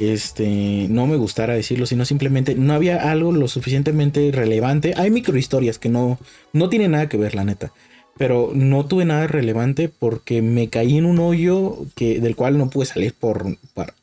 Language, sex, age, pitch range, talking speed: Spanish, male, 30-49, 110-135 Hz, 190 wpm